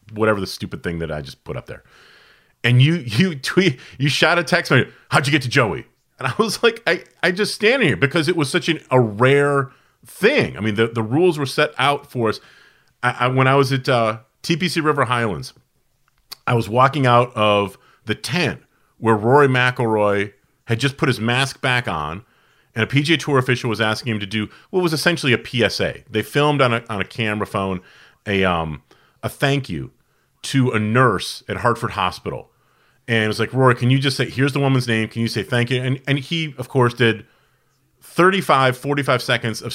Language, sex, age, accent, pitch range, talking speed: English, male, 40-59, American, 115-140 Hz, 210 wpm